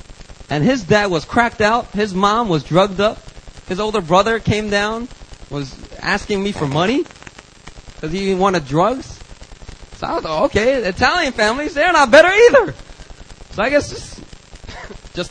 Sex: male